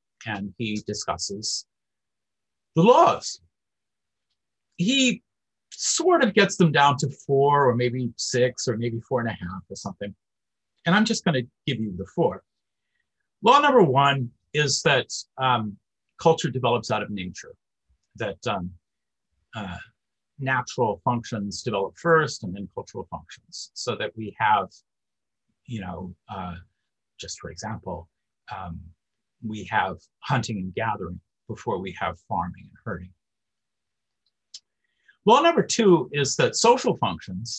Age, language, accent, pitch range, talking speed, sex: 50-69, English, American, 95-140 Hz, 130 wpm, male